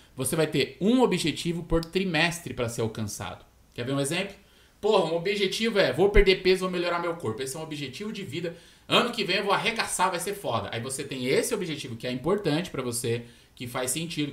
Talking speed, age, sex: 220 wpm, 20-39, male